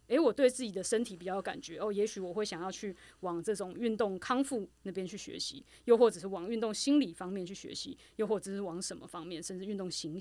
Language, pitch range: Chinese, 185-235 Hz